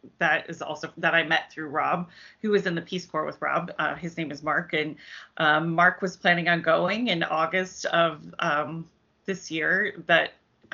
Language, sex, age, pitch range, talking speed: English, female, 30-49, 160-190 Hz, 195 wpm